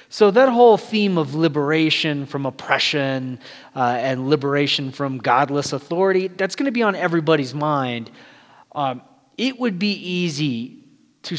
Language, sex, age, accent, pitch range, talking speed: English, male, 30-49, American, 130-175 Hz, 140 wpm